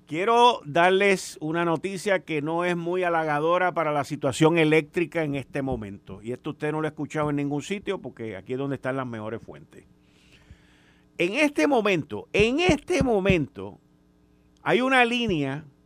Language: Spanish